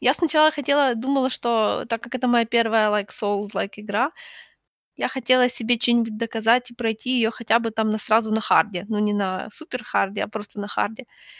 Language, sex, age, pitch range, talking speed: Ukrainian, female, 20-39, 220-290 Hz, 190 wpm